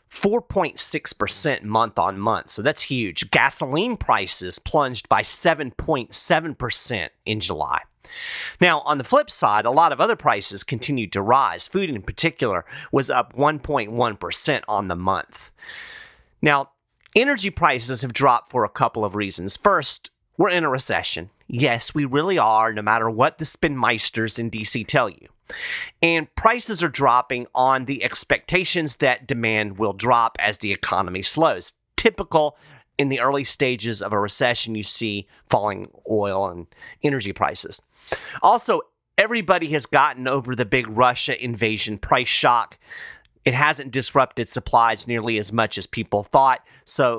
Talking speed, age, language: 150 wpm, 30-49, English